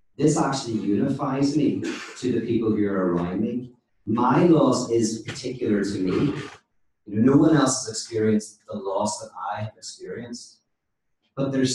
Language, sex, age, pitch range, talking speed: English, male, 40-59, 105-120 Hz, 155 wpm